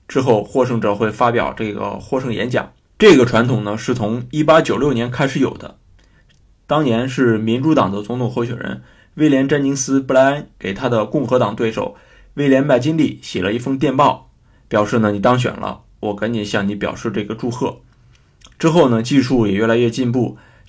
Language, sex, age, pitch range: Chinese, male, 20-39, 115-135 Hz